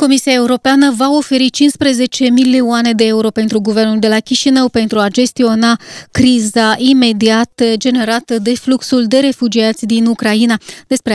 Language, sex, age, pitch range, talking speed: Romanian, female, 20-39, 215-250 Hz, 140 wpm